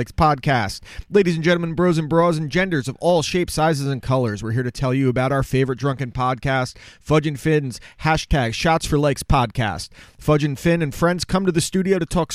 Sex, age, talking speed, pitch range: male, 30-49, 215 wpm, 120-145 Hz